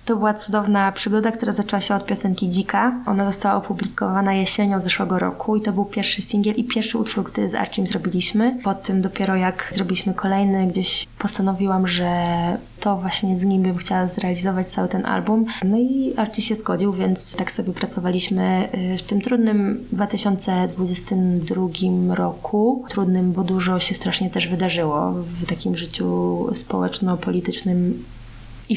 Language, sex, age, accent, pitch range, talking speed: Polish, female, 20-39, native, 185-210 Hz, 150 wpm